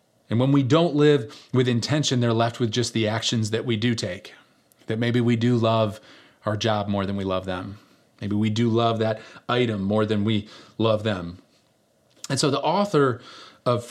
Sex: male